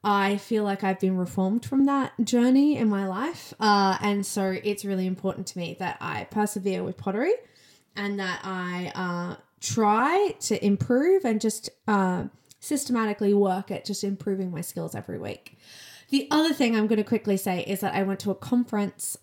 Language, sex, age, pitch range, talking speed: English, female, 10-29, 185-230 Hz, 185 wpm